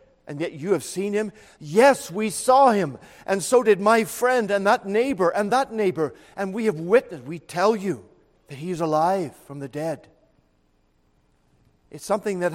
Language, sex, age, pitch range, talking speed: English, male, 50-69, 150-195 Hz, 180 wpm